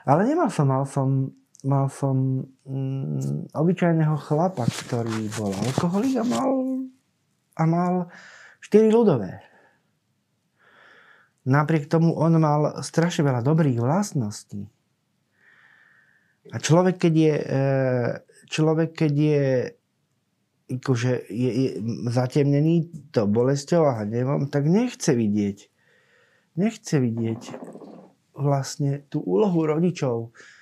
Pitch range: 125-165 Hz